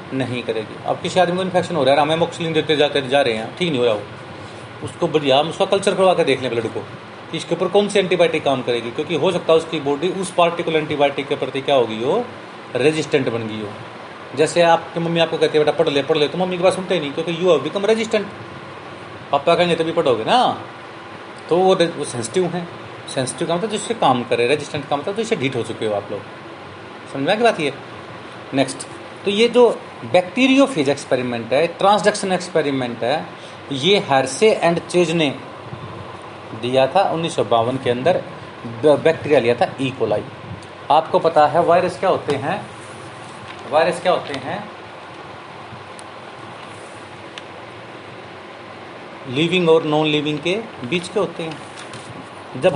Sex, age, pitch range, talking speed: male, 30-49, 135-180 Hz, 175 wpm